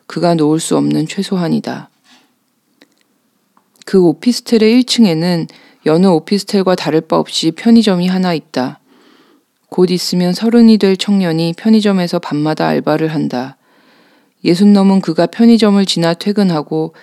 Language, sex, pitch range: Korean, female, 160-220 Hz